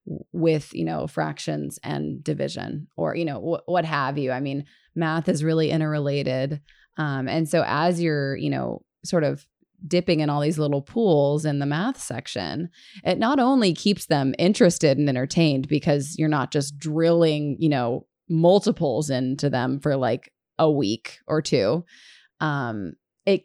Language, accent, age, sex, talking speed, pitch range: English, American, 20-39, female, 160 wpm, 140-170 Hz